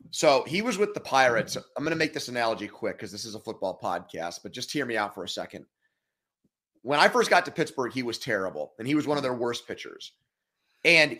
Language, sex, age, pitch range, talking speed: English, male, 30-49, 120-180 Hz, 240 wpm